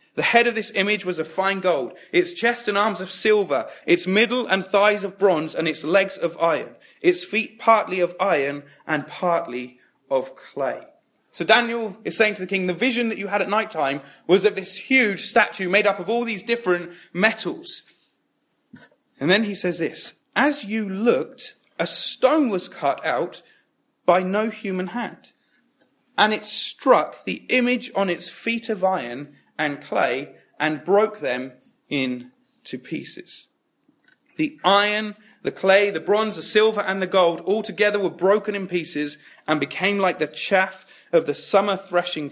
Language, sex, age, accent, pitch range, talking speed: English, male, 30-49, British, 170-220 Hz, 175 wpm